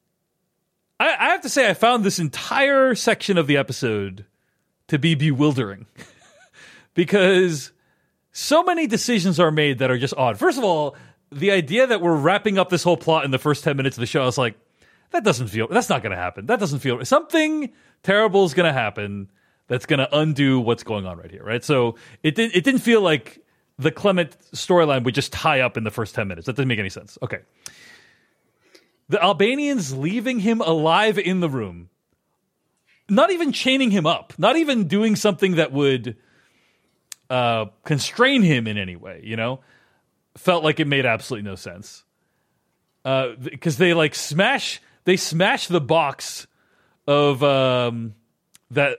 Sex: male